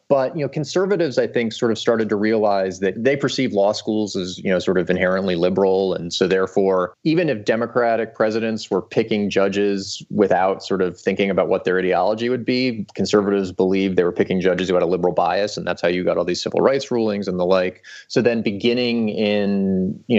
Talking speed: 215 wpm